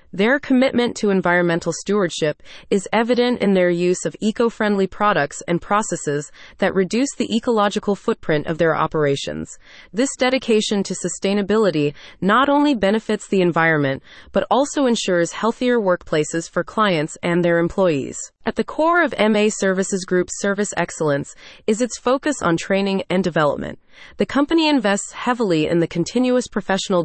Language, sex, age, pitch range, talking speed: English, female, 30-49, 170-230 Hz, 145 wpm